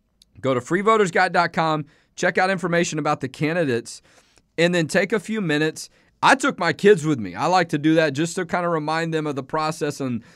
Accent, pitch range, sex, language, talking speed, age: American, 140-175 Hz, male, English, 210 wpm, 40-59